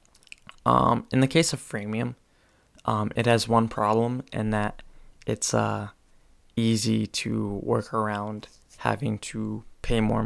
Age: 20-39